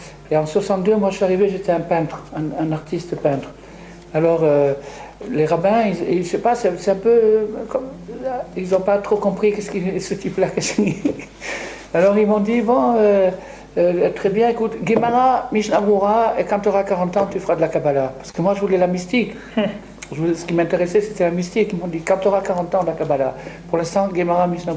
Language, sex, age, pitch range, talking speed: French, male, 60-79, 165-205 Hz, 215 wpm